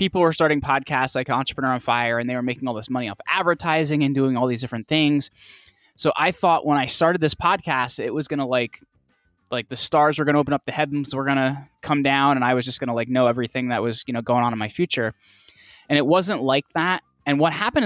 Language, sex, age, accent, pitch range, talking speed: Romanian, male, 10-29, American, 125-150 Hz, 260 wpm